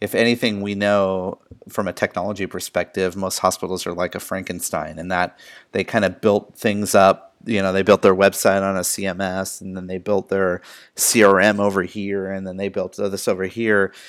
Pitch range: 95-105 Hz